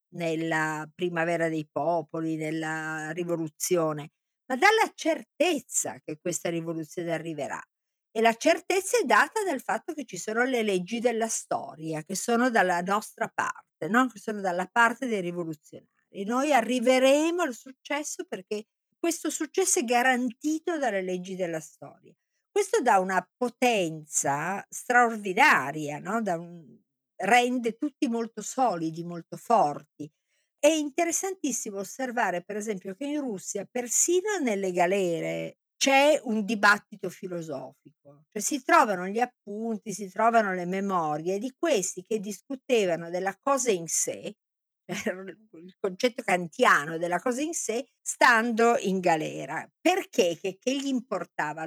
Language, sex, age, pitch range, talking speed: Italian, female, 50-69, 175-260 Hz, 130 wpm